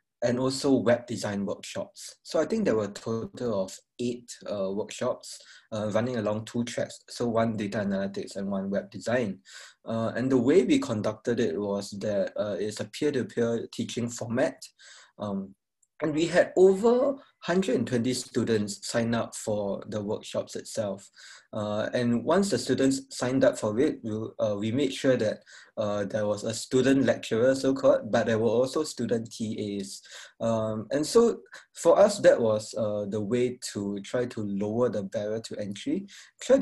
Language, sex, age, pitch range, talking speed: English, male, 20-39, 105-130 Hz, 165 wpm